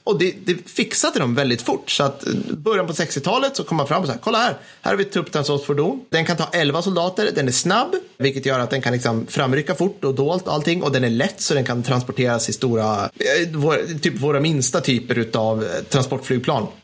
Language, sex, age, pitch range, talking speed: Swedish, male, 30-49, 130-205 Hz, 215 wpm